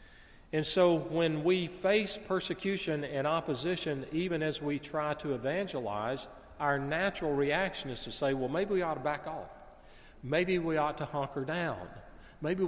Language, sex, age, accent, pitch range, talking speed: English, male, 40-59, American, 125-165 Hz, 160 wpm